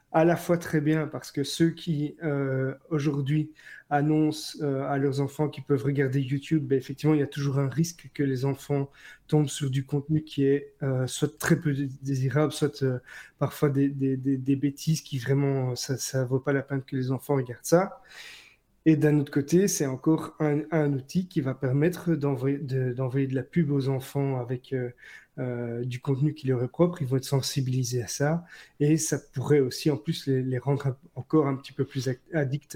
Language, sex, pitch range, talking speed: French, male, 135-150 Hz, 210 wpm